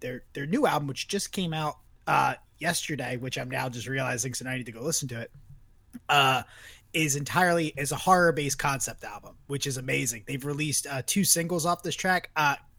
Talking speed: 205 wpm